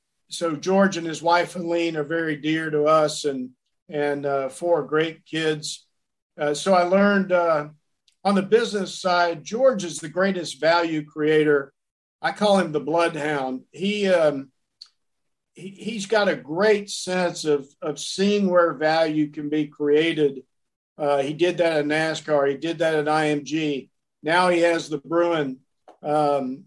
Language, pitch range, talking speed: English, 145-170 Hz, 155 wpm